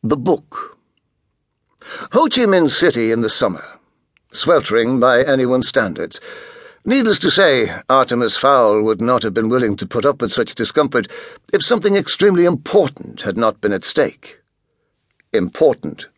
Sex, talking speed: male, 145 wpm